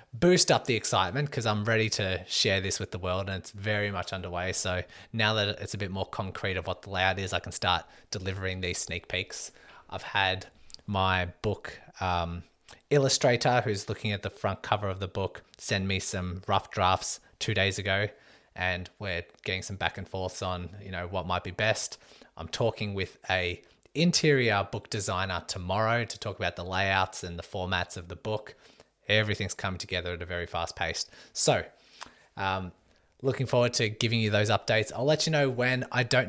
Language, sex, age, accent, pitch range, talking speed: English, male, 20-39, Australian, 95-110 Hz, 195 wpm